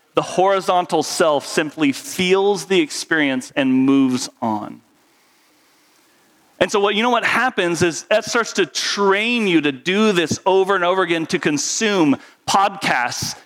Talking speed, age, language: 145 wpm, 40-59, English